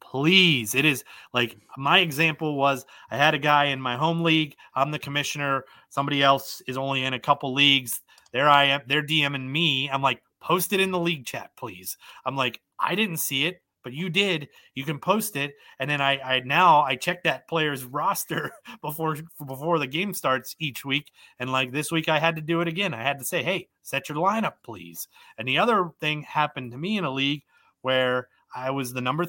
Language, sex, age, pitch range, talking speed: English, male, 30-49, 135-170 Hz, 215 wpm